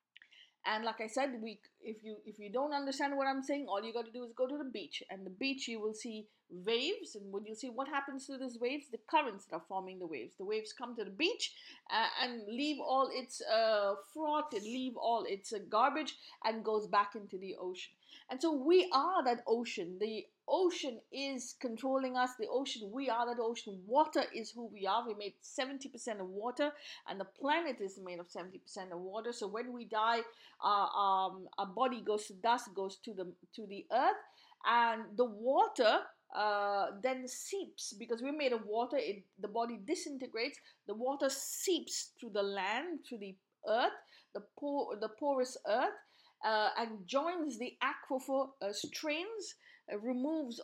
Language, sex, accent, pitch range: English, female, Indian, 210-280 Hz